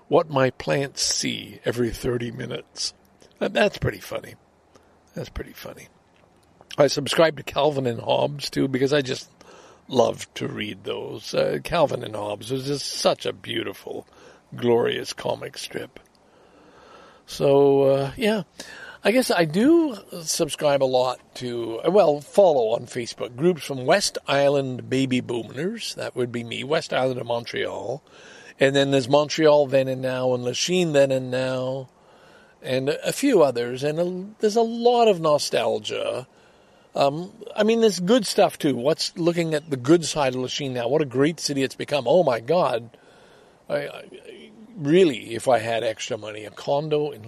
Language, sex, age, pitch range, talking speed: English, male, 60-79, 125-160 Hz, 155 wpm